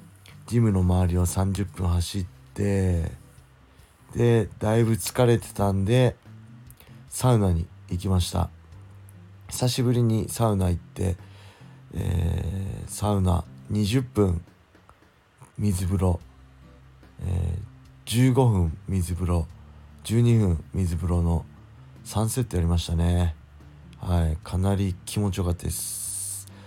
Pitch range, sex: 90-110 Hz, male